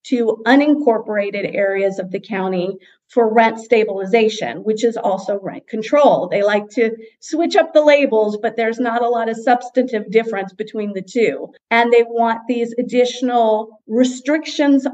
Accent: American